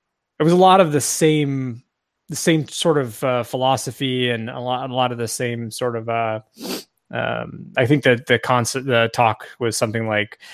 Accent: American